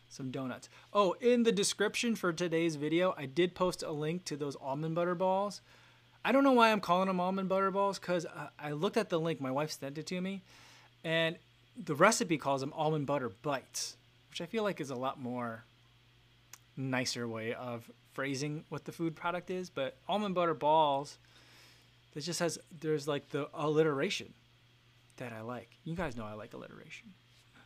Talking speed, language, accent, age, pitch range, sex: 185 wpm, English, American, 20-39, 120-165 Hz, male